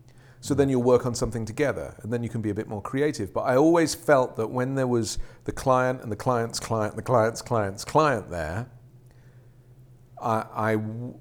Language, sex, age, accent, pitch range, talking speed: English, male, 40-59, British, 100-125 Hz, 200 wpm